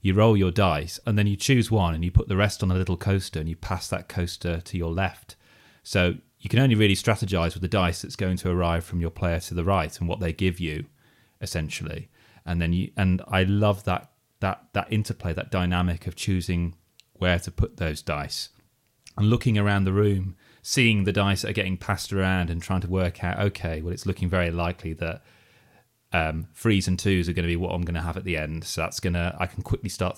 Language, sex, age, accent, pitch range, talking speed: English, male, 30-49, British, 85-105 Hz, 235 wpm